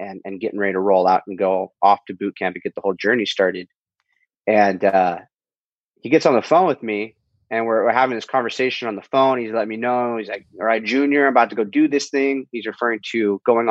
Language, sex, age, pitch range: English, male, 30-49, 100-135 Hz